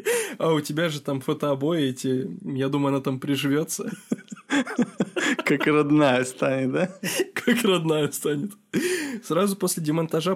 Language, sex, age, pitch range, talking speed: Russian, male, 20-39, 135-170 Hz, 125 wpm